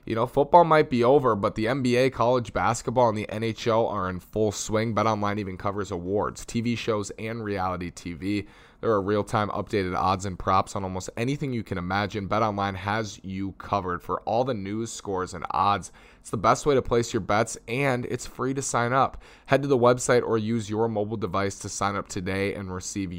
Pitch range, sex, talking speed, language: 95-115 Hz, male, 210 wpm, English